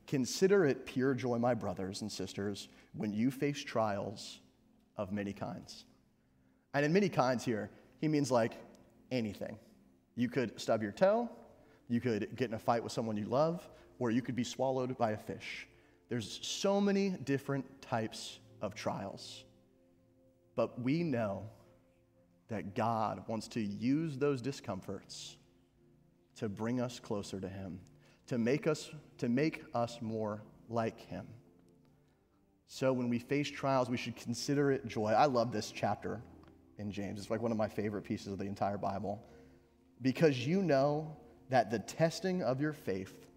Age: 30-49